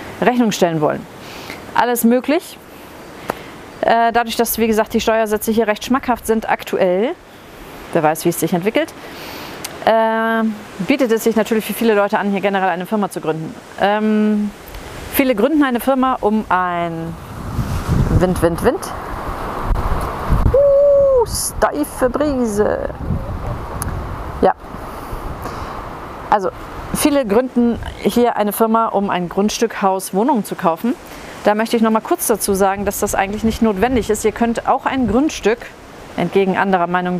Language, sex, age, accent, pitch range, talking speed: German, female, 40-59, German, 180-235 Hz, 135 wpm